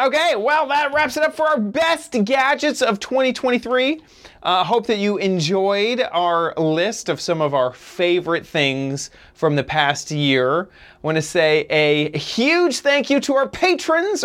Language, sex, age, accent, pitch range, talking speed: English, male, 30-49, American, 140-200 Hz, 170 wpm